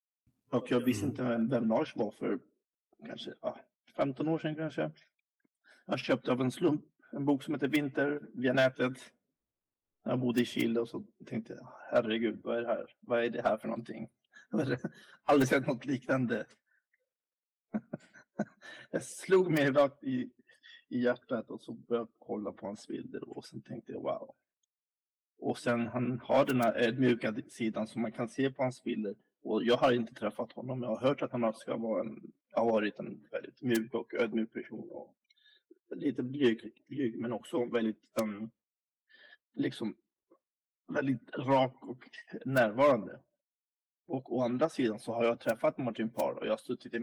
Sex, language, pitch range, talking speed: male, Swedish, 115-140 Hz, 170 wpm